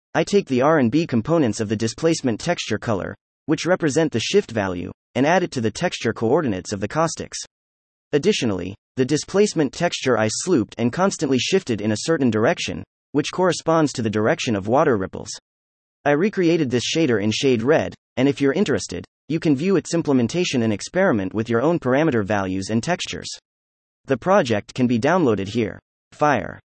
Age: 30-49